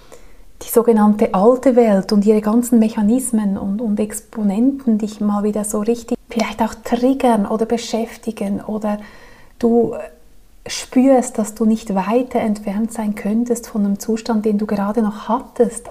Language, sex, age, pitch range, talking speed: German, female, 30-49, 205-230 Hz, 145 wpm